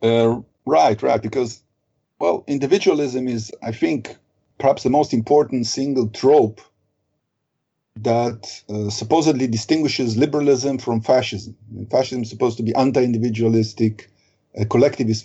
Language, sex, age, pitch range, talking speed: English, male, 50-69, 110-135 Hz, 120 wpm